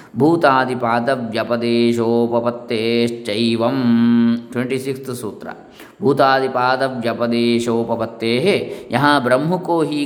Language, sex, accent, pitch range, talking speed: English, male, Indian, 115-150 Hz, 95 wpm